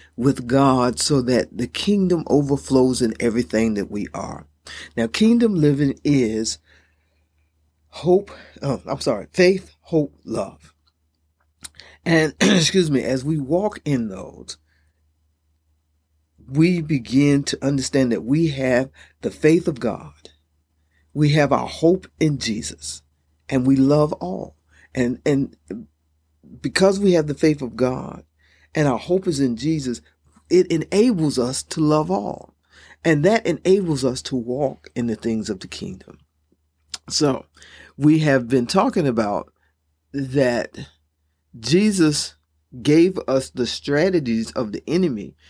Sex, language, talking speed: male, English, 130 wpm